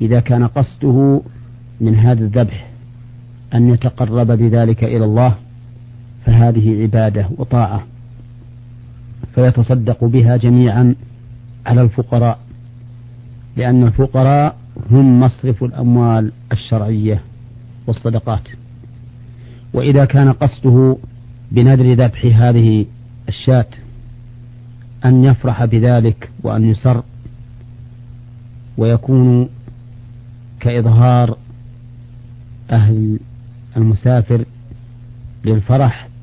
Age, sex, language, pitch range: 50-69, male, Arabic, 115-120 Hz